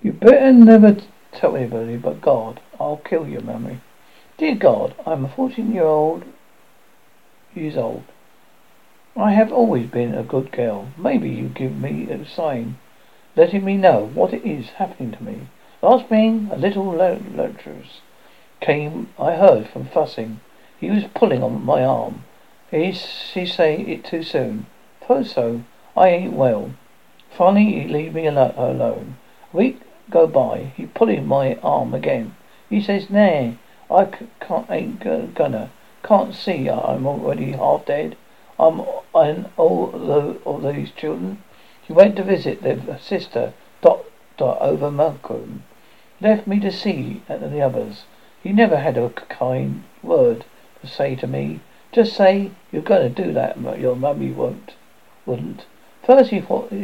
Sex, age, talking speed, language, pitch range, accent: male, 60-79, 155 wpm, English, 135-215 Hz, British